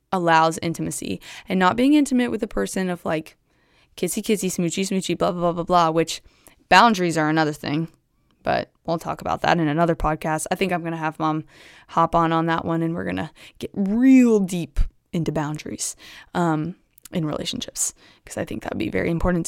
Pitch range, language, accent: 165-195 Hz, English, American